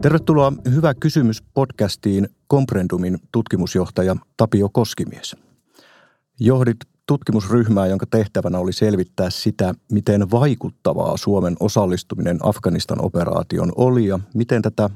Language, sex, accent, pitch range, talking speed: Finnish, male, native, 95-120 Hz, 95 wpm